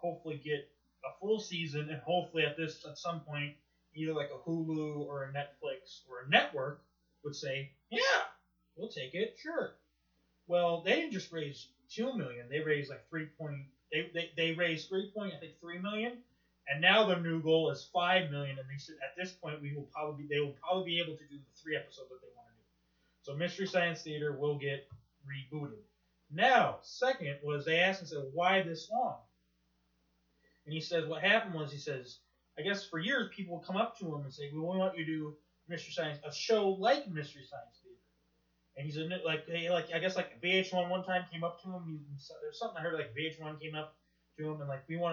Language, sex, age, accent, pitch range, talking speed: English, male, 20-39, American, 140-175 Hz, 220 wpm